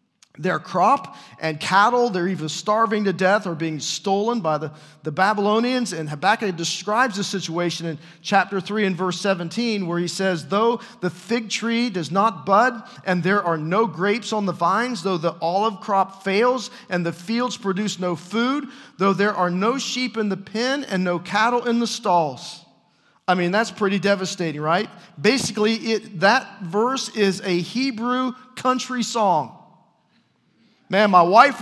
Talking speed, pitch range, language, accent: 165 wpm, 180-235 Hz, English, American